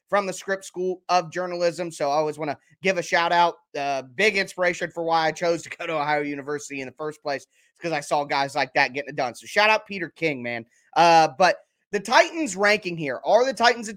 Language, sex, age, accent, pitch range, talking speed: English, male, 20-39, American, 160-215 Hz, 230 wpm